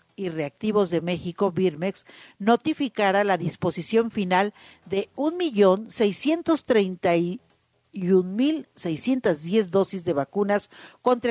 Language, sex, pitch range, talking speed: Spanish, female, 190-250 Hz, 80 wpm